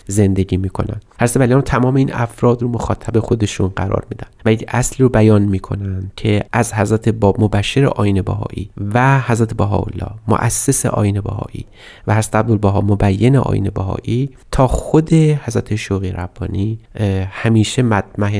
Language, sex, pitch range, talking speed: Persian, male, 100-125 Hz, 145 wpm